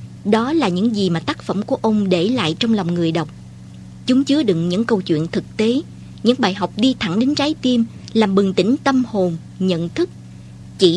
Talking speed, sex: 215 wpm, male